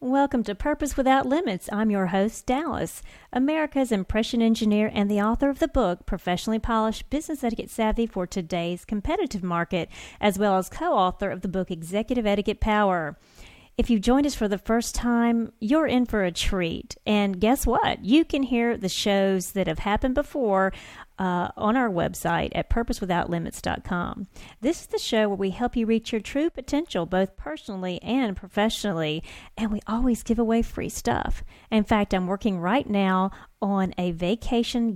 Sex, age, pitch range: female, 40-59, 190-245 Hz